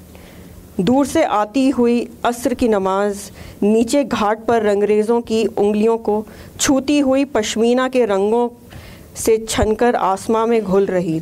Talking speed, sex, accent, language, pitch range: 135 wpm, female, native, Hindi, 180-240 Hz